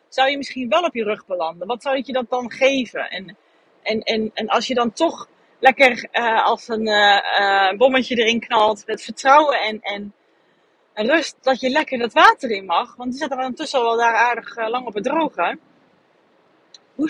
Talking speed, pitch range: 210 wpm, 200-260 Hz